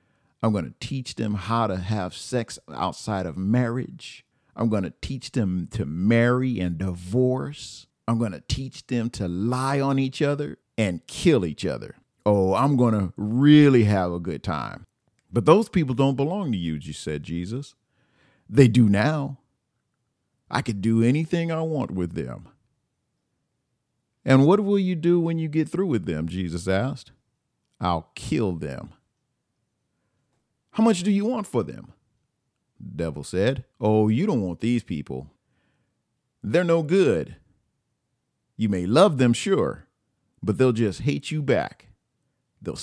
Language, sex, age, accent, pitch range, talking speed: English, male, 50-69, American, 100-135 Hz, 155 wpm